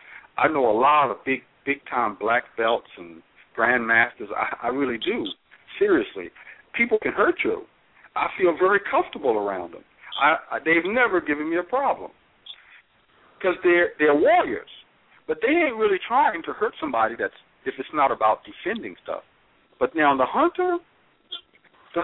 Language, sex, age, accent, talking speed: English, male, 60-79, American, 165 wpm